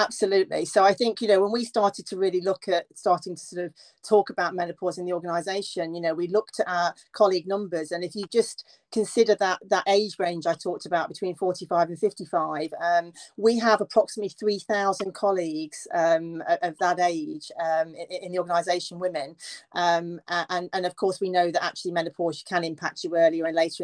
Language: English